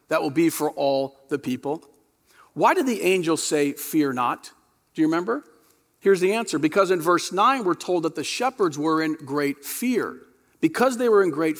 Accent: American